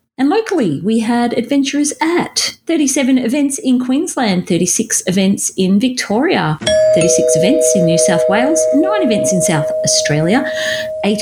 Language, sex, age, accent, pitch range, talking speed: English, female, 30-49, Australian, 195-285 Hz, 140 wpm